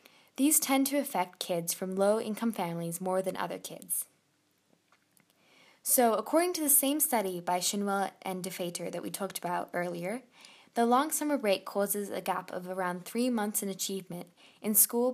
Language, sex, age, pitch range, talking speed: English, female, 10-29, 180-245 Hz, 165 wpm